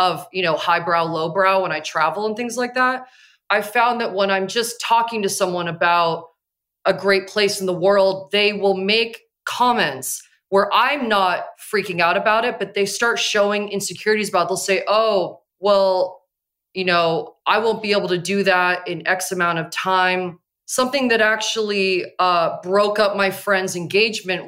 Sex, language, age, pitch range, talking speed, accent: female, English, 20-39, 185-225 Hz, 180 wpm, American